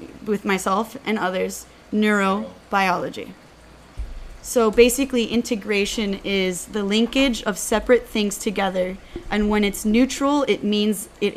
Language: English